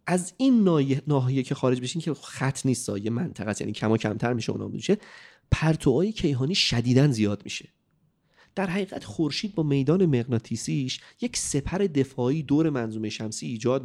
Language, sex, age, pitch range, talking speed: Persian, male, 30-49, 120-170 Hz, 155 wpm